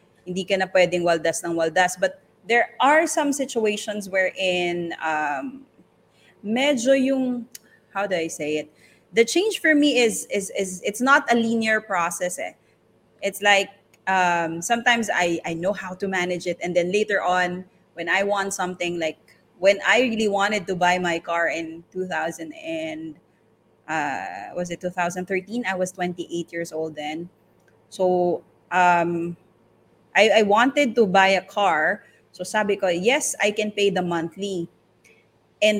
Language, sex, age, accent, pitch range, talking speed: English, female, 20-39, Filipino, 175-220 Hz, 155 wpm